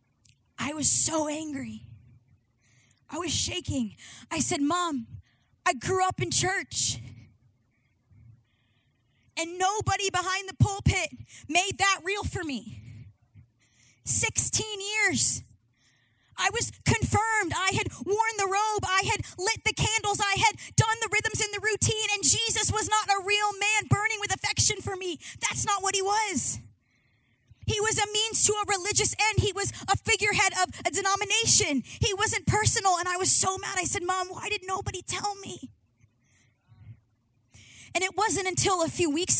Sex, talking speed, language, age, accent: female, 155 wpm, English, 20-39, American